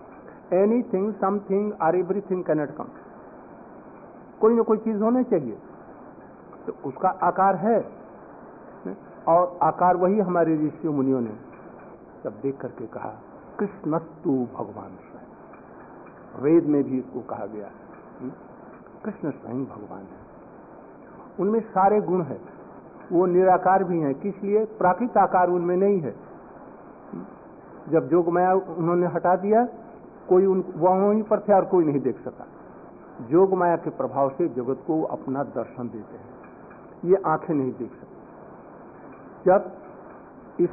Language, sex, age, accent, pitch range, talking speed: Hindi, male, 50-69, native, 150-195 Hz, 135 wpm